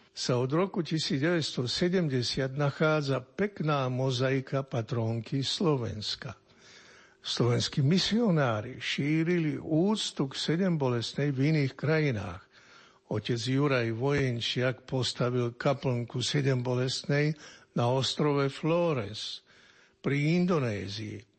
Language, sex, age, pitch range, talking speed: Slovak, male, 60-79, 120-155 Hz, 80 wpm